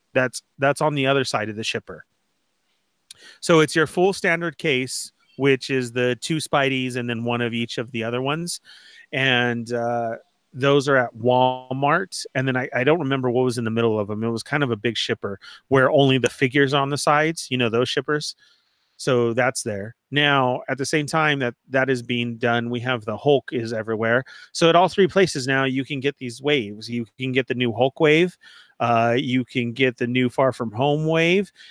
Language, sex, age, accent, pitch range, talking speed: English, male, 30-49, American, 120-145 Hz, 215 wpm